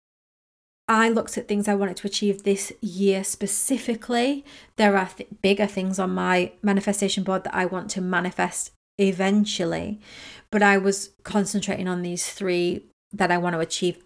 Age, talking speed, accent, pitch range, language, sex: 30-49, 160 wpm, British, 180-205 Hz, English, female